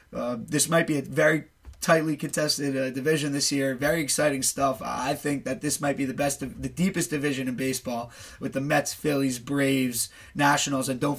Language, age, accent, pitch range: English, 20-39, American, 130-145 Hz